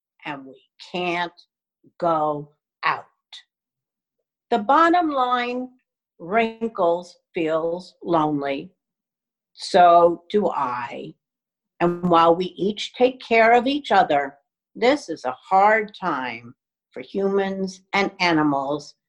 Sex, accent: female, American